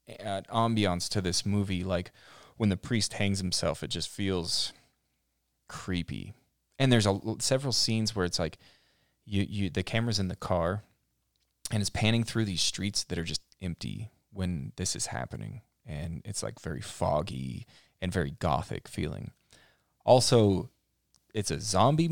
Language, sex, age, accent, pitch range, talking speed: English, male, 20-39, American, 95-115 Hz, 150 wpm